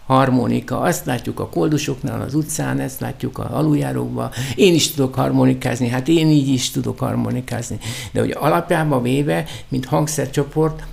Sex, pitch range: male, 125-150 Hz